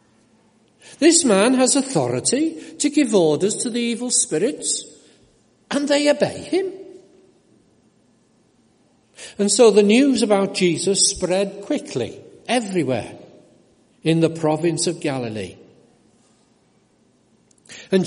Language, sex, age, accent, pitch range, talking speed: English, male, 60-79, British, 180-250 Hz, 100 wpm